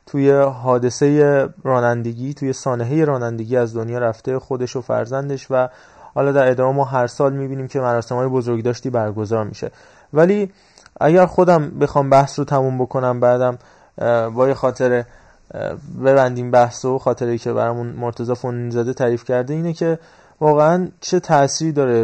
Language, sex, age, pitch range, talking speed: Persian, male, 20-39, 125-155 Hz, 135 wpm